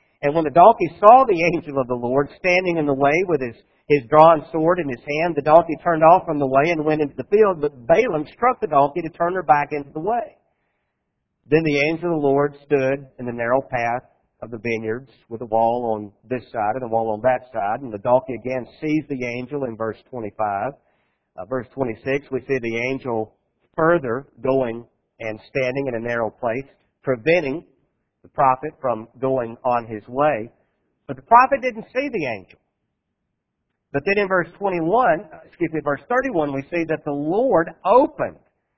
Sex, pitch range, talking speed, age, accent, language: male, 120-160 Hz, 195 wpm, 50-69, American, English